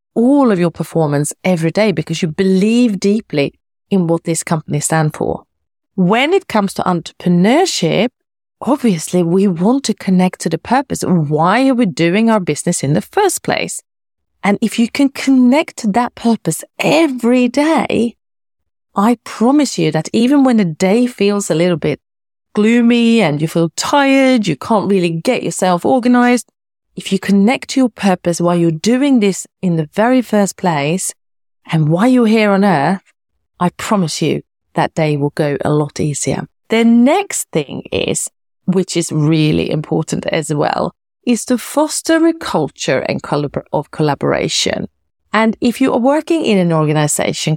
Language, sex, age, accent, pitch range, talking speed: English, female, 30-49, British, 170-245 Hz, 165 wpm